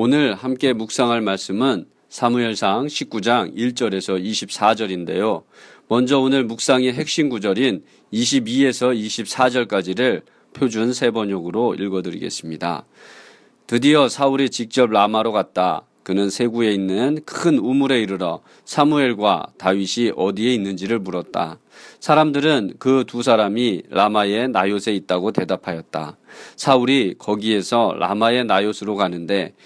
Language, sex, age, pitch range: Korean, male, 40-59, 95-125 Hz